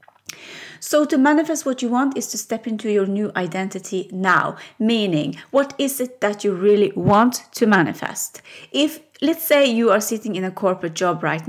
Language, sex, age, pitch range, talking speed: English, female, 30-49, 185-245 Hz, 185 wpm